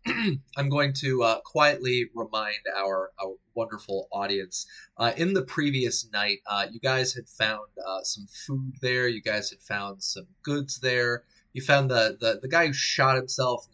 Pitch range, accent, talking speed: 100-135 Hz, American, 180 wpm